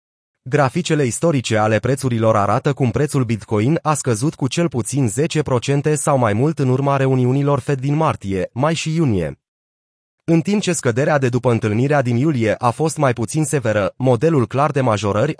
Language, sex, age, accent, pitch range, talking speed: Romanian, male, 30-49, native, 120-150 Hz, 170 wpm